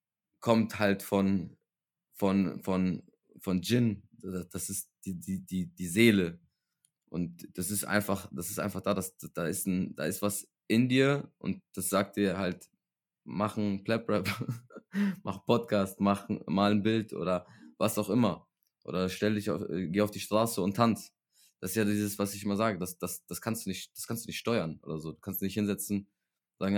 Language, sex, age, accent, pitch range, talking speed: German, male, 20-39, German, 90-105 Hz, 195 wpm